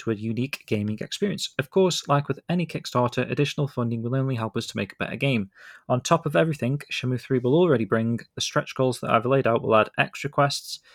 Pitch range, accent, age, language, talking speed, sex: 115-140 Hz, British, 20-39, English, 230 wpm, male